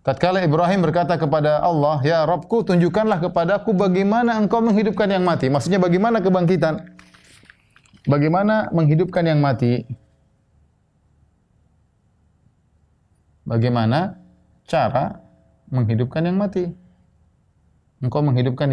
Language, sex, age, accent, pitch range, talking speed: Indonesian, male, 30-49, native, 115-170 Hz, 90 wpm